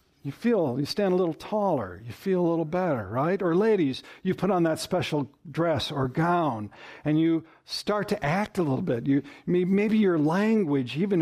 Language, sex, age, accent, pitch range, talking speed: English, male, 60-79, American, 135-185 Hz, 195 wpm